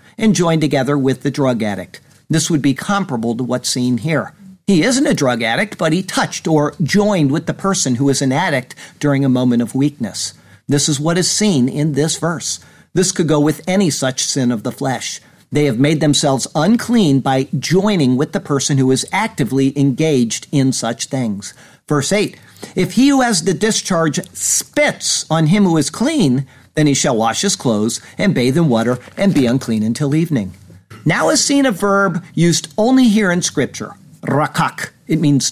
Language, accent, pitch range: English, American, 135-190 Hz